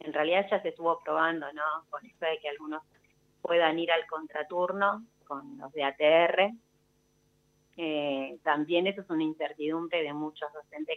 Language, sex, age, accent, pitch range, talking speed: Spanish, female, 30-49, Argentinian, 145-165 Hz, 160 wpm